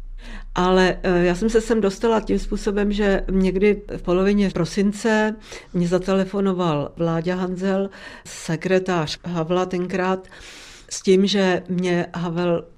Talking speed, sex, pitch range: 115 wpm, female, 170-200 Hz